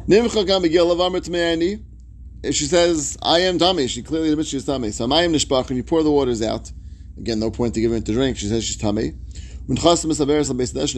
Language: English